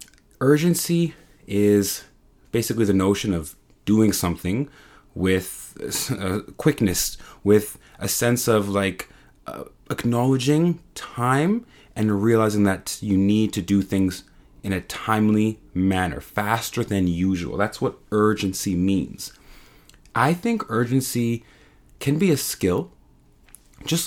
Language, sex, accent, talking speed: English, male, American, 115 wpm